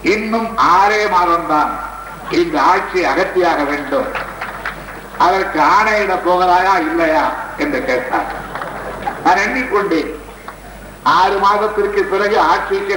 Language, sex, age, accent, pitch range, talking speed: Tamil, male, 60-79, native, 180-245 Hz, 90 wpm